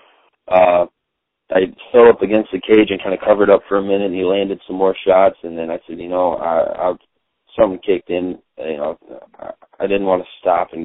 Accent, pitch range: American, 90-105 Hz